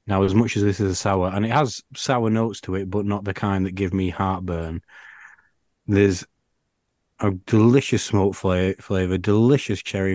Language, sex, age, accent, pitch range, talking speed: English, male, 30-49, British, 95-120 Hz, 175 wpm